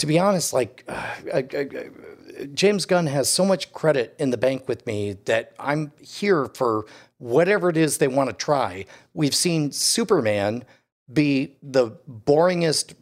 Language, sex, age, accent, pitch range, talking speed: English, male, 40-59, American, 125-155 Hz, 150 wpm